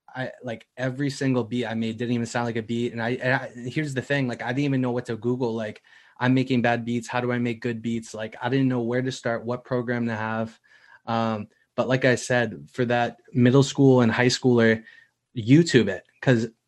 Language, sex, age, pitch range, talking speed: English, male, 20-39, 115-125 Hz, 235 wpm